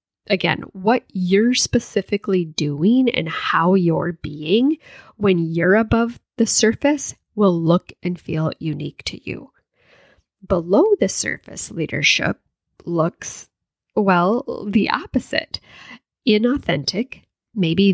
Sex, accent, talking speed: female, American, 105 wpm